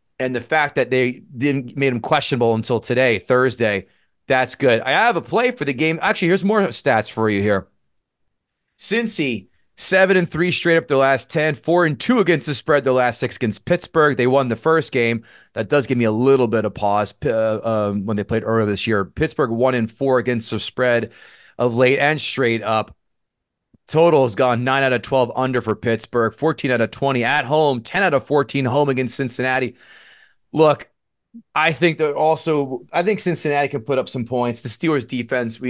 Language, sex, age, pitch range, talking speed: English, male, 30-49, 115-150 Hz, 205 wpm